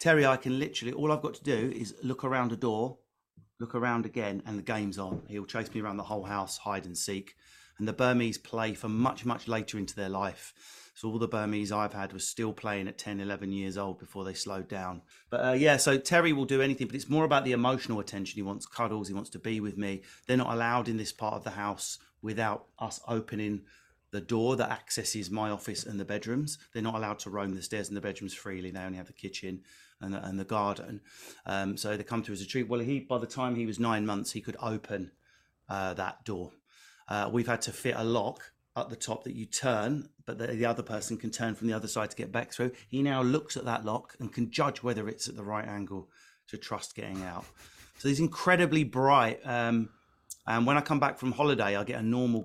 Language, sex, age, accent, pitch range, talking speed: English, male, 30-49, British, 100-125 Hz, 240 wpm